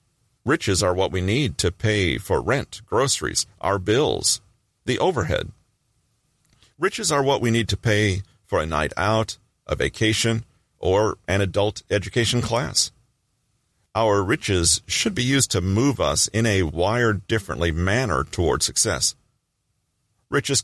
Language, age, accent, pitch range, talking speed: English, 40-59, American, 95-120 Hz, 140 wpm